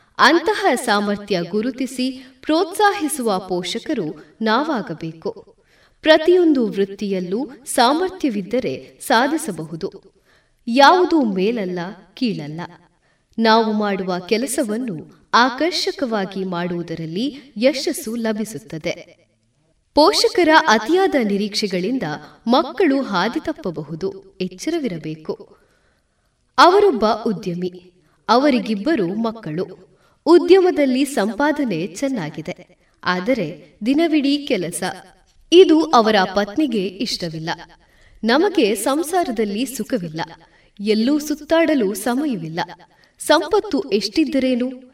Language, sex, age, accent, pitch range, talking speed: Kannada, female, 20-39, native, 190-300 Hz, 65 wpm